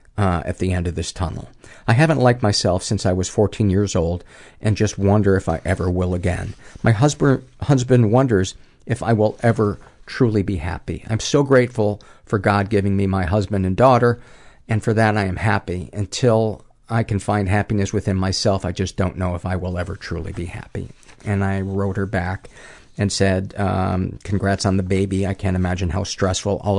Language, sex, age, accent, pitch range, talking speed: English, male, 50-69, American, 95-110 Hz, 200 wpm